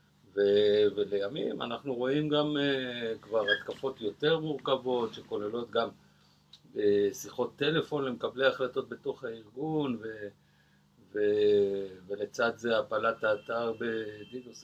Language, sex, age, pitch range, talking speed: Hebrew, male, 50-69, 100-140 Hz, 110 wpm